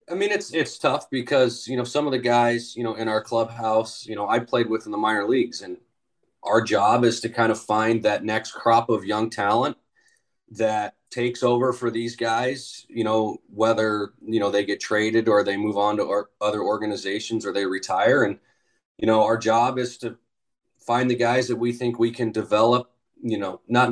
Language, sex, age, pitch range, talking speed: English, male, 30-49, 110-120 Hz, 210 wpm